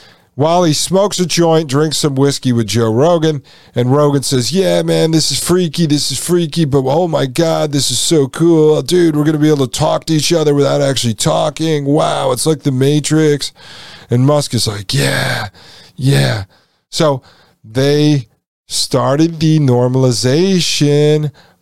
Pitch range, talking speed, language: 135-165 Hz, 165 wpm, English